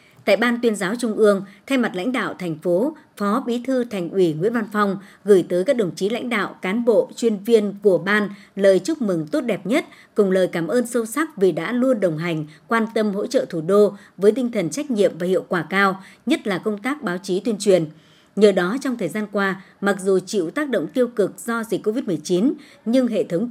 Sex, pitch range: male, 185-235 Hz